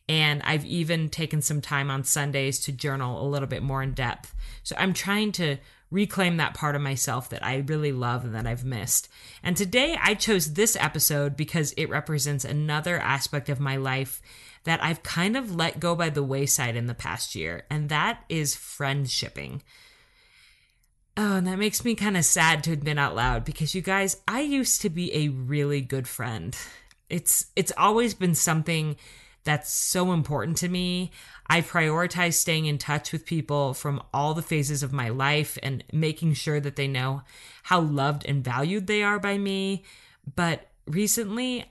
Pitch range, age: 135-175 Hz, 30-49